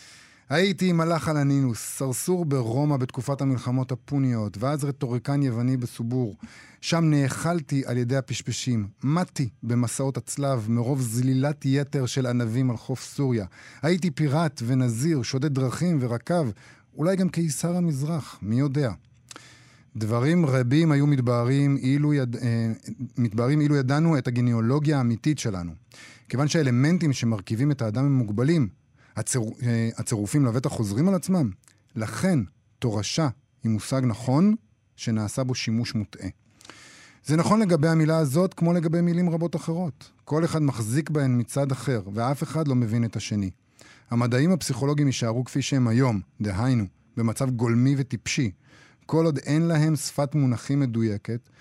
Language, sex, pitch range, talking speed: Hebrew, male, 120-150 Hz, 130 wpm